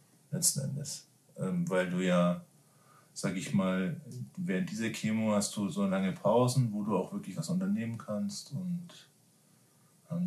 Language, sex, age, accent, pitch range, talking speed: German, male, 40-59, German, 115-170 Hz, 150 wpm